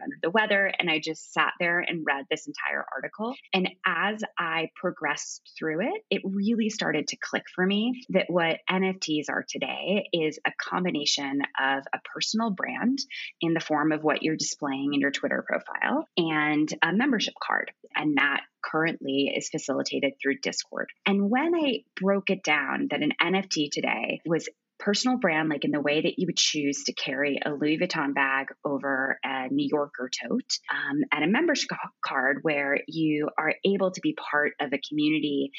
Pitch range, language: 145-195 Hz, English